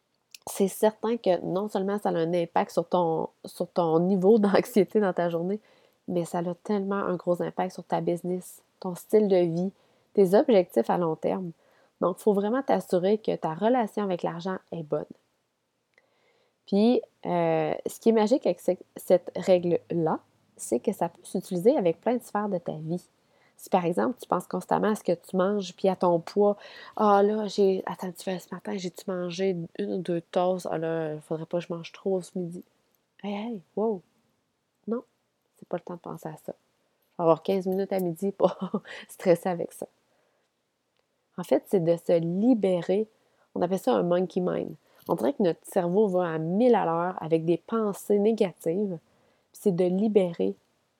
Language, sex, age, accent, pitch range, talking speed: French, female, 20-39, Canadian, 175-205 Hz, 200 wpm